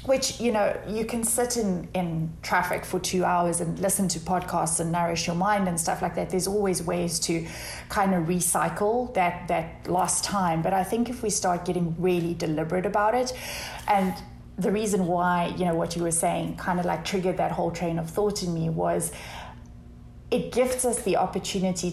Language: English